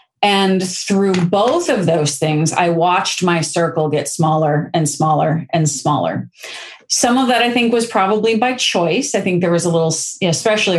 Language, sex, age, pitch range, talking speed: English, female, 40-59, 160-215 Hz, 180 wpm